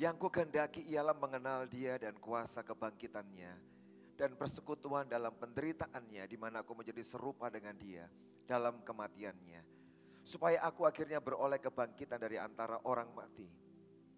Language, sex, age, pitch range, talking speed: Indonesian, male, 30-49, 105-150 Hz, 125 wpm